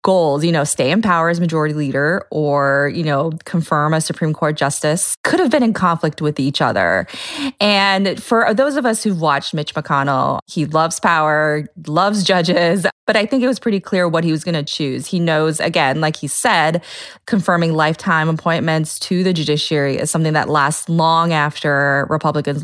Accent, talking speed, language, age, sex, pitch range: American, 190 wpm, English, 20-39, female, 150-185 Hz